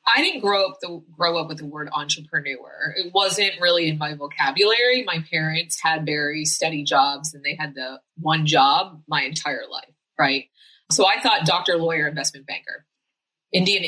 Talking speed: 170 wpm